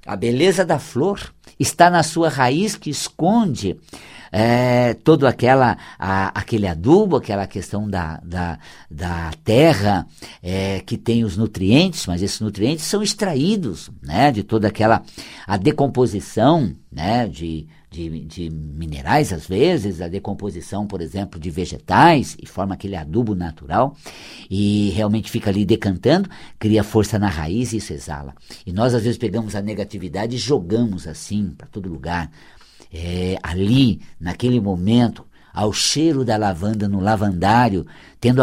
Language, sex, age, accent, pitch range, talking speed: Portuguese, male, 50-69, Brazilian, 95-125 Hz, 135 wpm